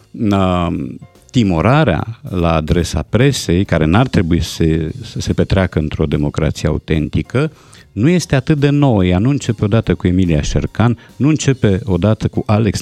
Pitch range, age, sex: 90-130 Hz, 50-69, male